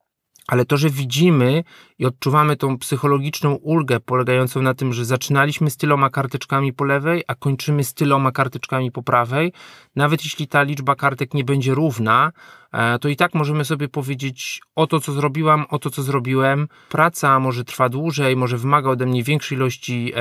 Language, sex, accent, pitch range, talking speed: Polish, male, native, 125-150 Hz, 170 wpm